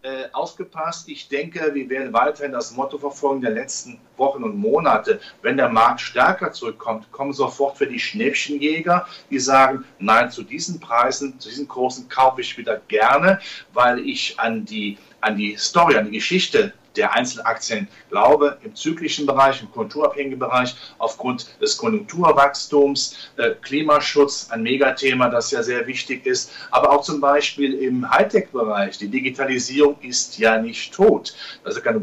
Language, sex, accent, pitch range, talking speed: German, male, German, 120-155 Hz, 155 wpm